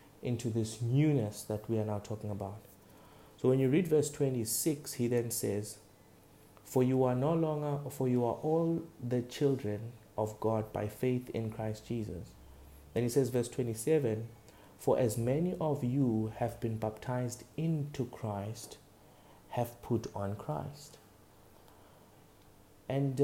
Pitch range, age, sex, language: 110-145 Hz, 30-49, male, English